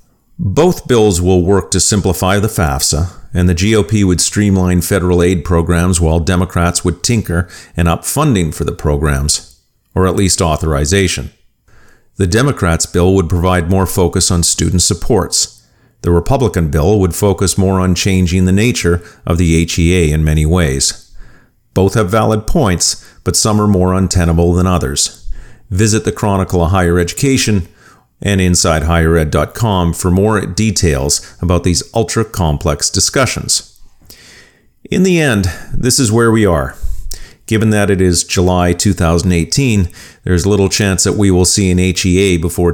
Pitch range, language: 85-105 Hz, English